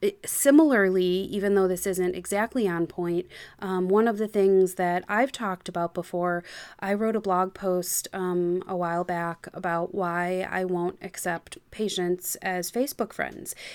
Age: 20-39